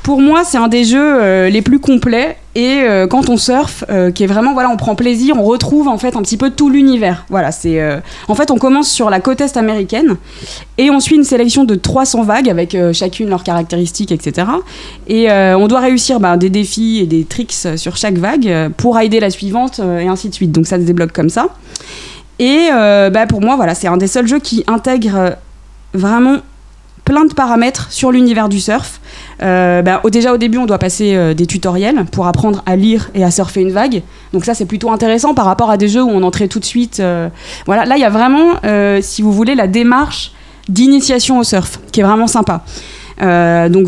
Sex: female